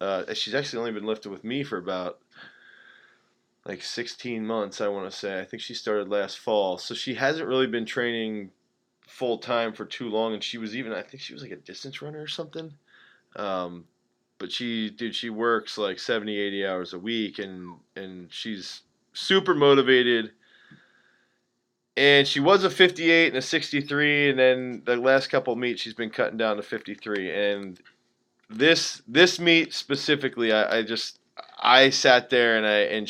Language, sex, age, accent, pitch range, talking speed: English, male, 20-39, American, 105-130 Hz, 180 wpm